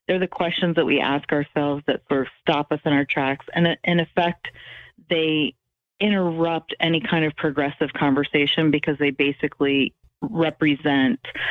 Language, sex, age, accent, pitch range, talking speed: English, female, 30-49, American, 145-170 Hz, 150 wpm